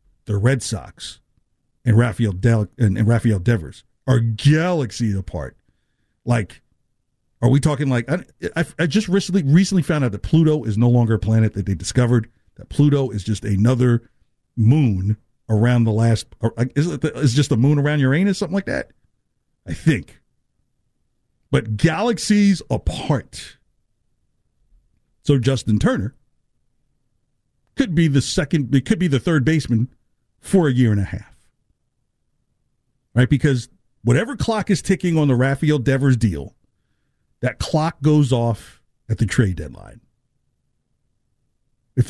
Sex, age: male, 50-69